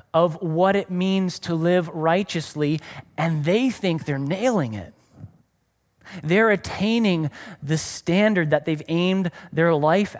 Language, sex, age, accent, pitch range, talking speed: English, male, 30-49, American, 150-190 Hz, 130 wpm